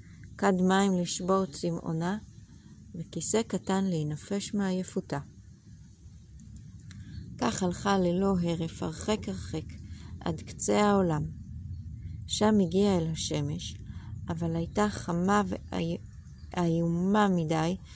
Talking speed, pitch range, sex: 85 wpm, 150-195 Hz, female